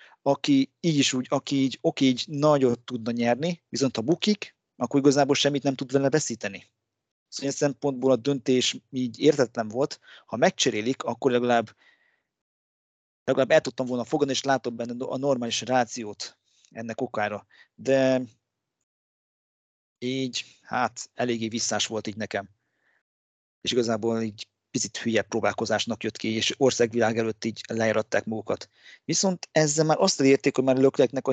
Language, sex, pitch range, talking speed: Hungarian, male, 115-135 Hz, 150 wpm